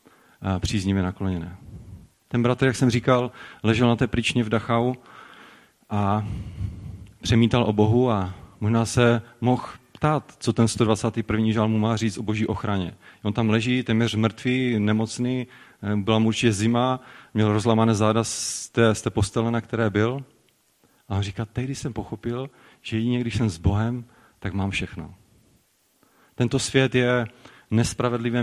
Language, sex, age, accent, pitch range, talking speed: Czech, male, 30-49, native, 105-120 Hz, 150 wpm